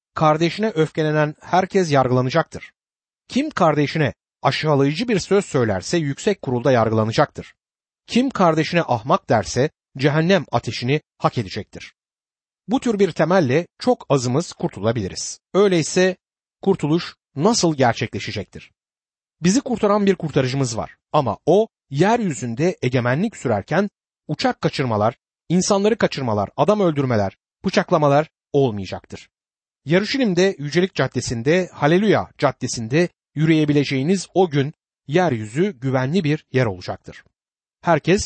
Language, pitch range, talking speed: Turkish, 130-185 Hz, 100 wpm